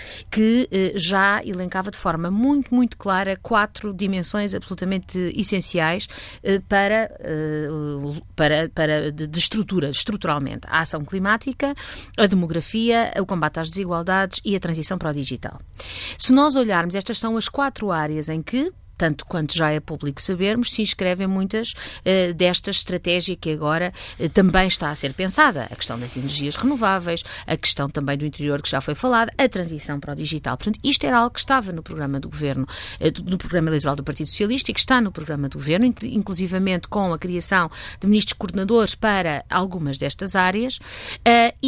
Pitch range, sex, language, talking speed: 155-210 Hz, female, Portuguese, 175 wpm